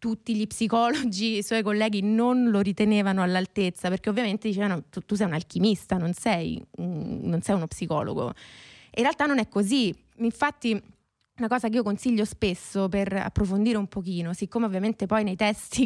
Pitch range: 195-225 Hz